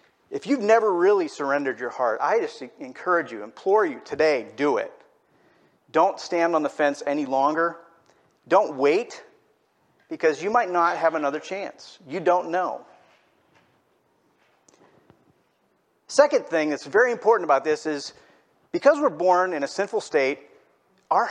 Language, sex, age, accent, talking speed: English, male, 40-59, American, 145 wpm